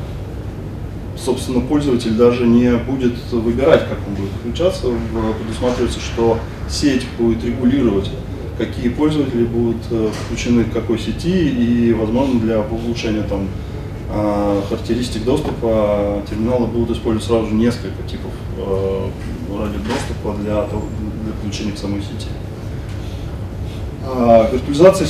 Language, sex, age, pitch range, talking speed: Russian, male, 20-39, 105-120 Hz, 105 wpm